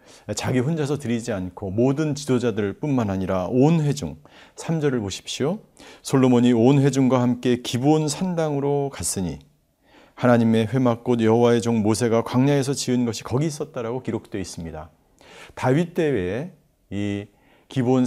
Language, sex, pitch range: Korean, male, 105-140 Hz